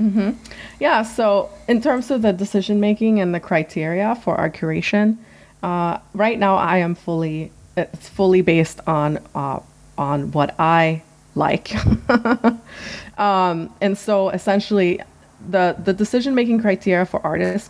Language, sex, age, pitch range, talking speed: English, female, 30-49, 160-195 Hz, 140 wpm